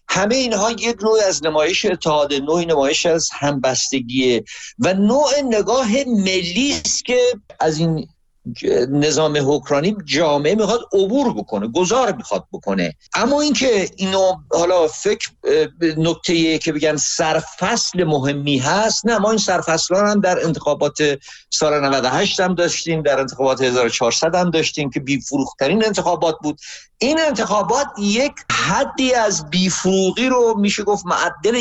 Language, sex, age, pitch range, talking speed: Persian, male, 50-69, 145-215 Hz, 135 wpm